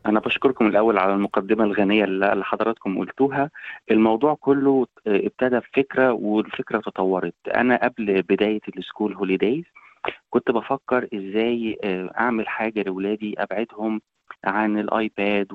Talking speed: 110 wpm